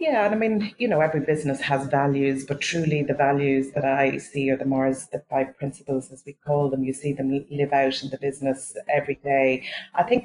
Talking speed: 230 wpm